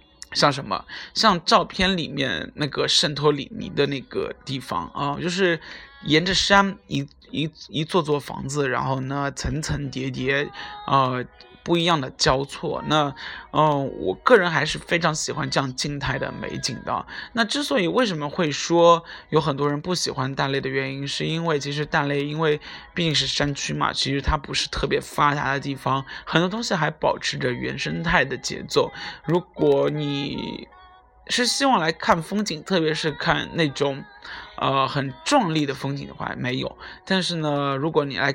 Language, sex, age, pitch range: Chinese, male, 20-39, 140-170 Hz